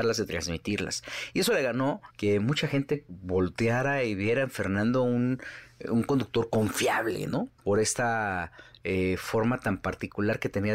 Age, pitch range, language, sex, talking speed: 40-59, 95-120 Hz, Spanish, male, 150 wpm